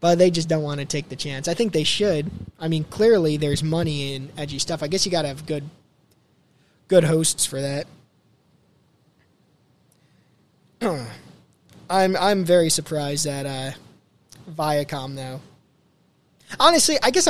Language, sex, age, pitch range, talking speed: English, male, 20-39, 145-185 Hz, 150 wpm